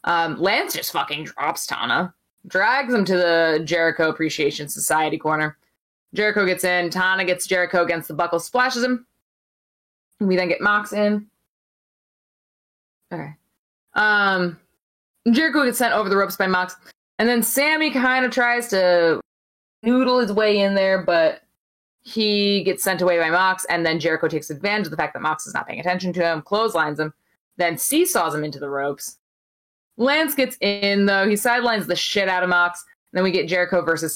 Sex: female